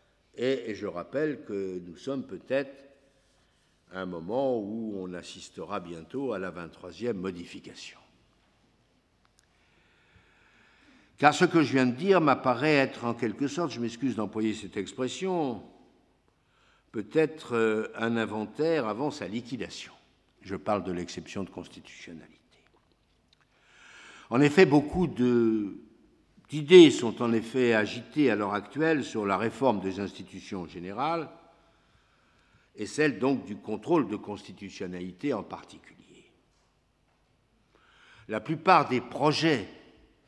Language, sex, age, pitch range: French, male, 60-79, 105-155 Hz